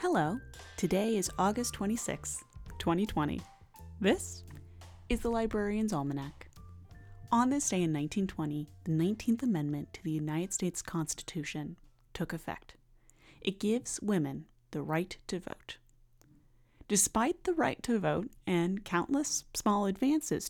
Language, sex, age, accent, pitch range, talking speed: English, female, 30-49, American, 140-195 Hz, 125 wpm